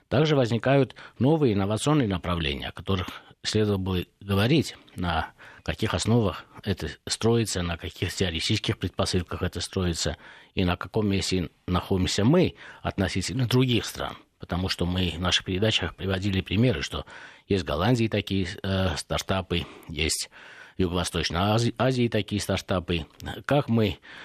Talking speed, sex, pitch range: 130 wpm, male, 90-115 Hz